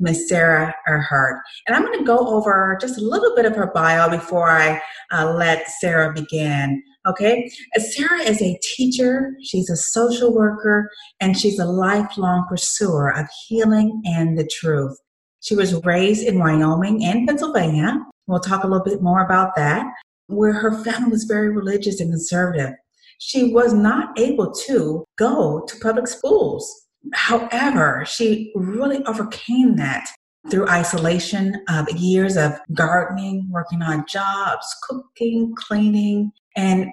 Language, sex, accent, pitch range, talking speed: English, female, American, 170-230 Hz, 150 wpm